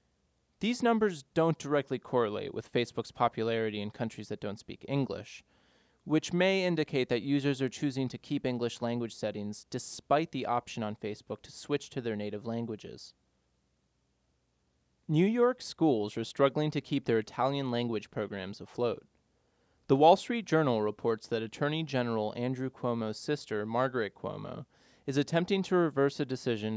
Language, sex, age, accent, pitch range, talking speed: English, male, 20-39, American, 110-145 Hz, 150 wpm